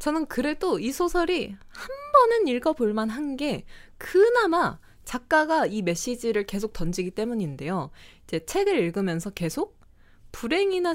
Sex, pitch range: female, 175-265 Hz